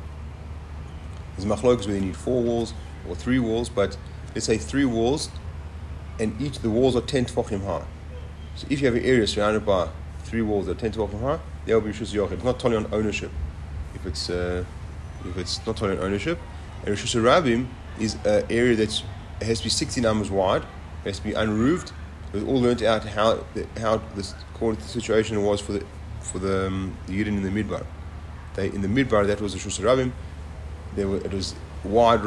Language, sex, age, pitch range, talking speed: English, male, 30-49, 80-110 Hz, 195 wpm